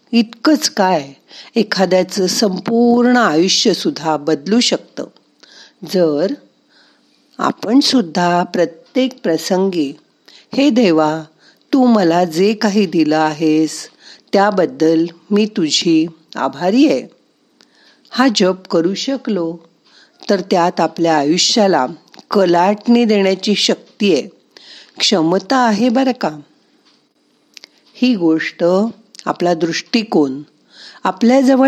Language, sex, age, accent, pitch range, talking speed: Marathi, female, 50-69, native, 170-240 Hz, 85 wpm